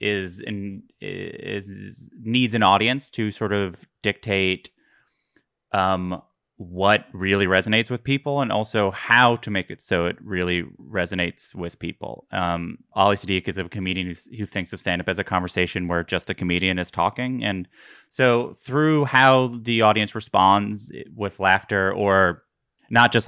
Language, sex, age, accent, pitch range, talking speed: English, male, 30-49, American, 95-110 Hz, 155 wpm